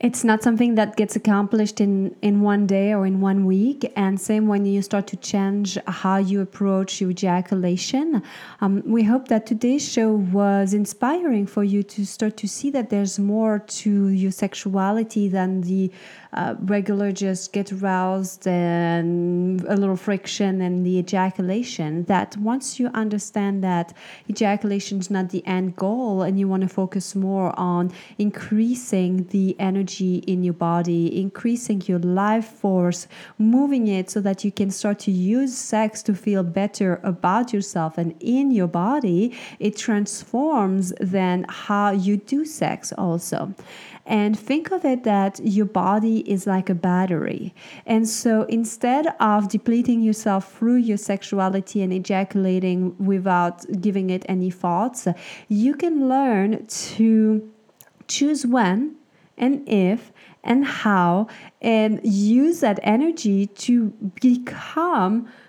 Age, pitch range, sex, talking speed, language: 30-49, 190-225 Hz, female, 145 wpm, English